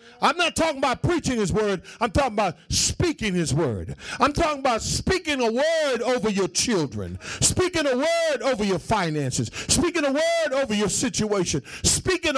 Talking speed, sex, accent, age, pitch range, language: 170 wpm, male, American, 50-69, 200-295 Hz, English